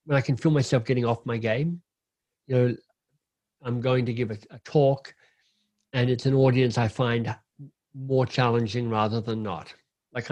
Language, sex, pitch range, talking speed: English, male, 115-140 Hz, 175 wpm